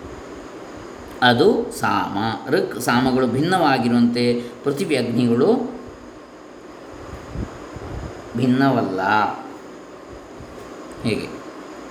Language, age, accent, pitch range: Kannada, 20-39, native, 125-130 Hz